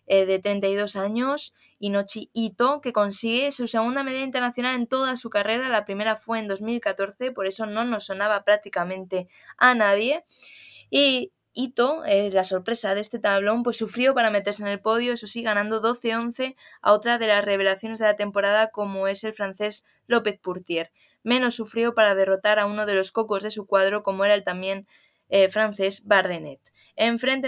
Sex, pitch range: female, 200-235 Hz